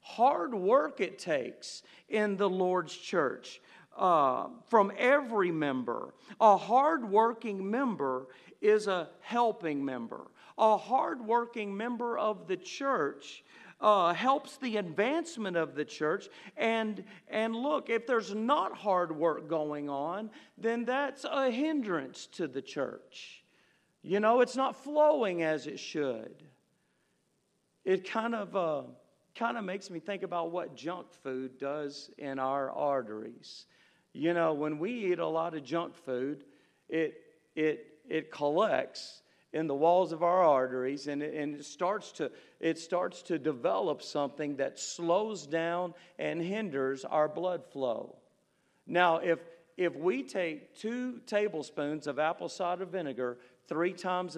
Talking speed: 140 wpm